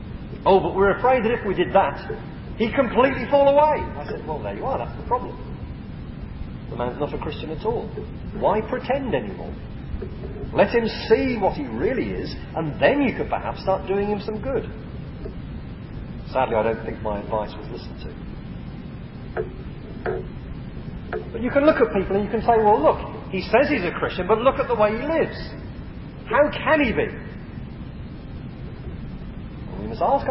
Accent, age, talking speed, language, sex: British, 40-59, 170 wpm, English, male